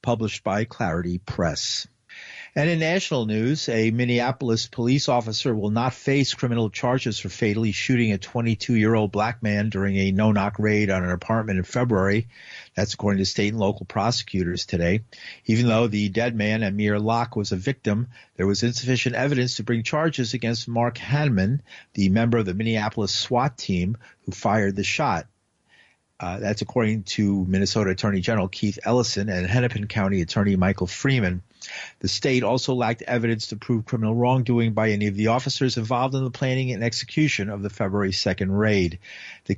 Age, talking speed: 50-69, 170 wpm